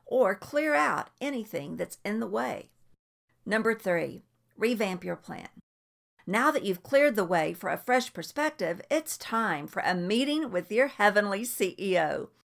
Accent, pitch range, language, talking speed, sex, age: American, 185-245 Hz, English, 155 wpm, female, 50-69